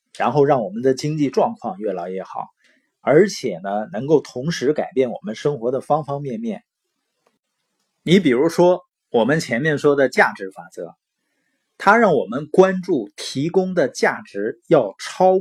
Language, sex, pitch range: Chinese, male, 135-195 Hz